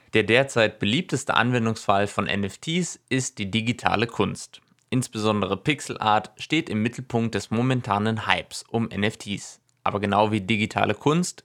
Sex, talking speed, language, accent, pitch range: male, 135 wpm, German, German, 105-135 Hz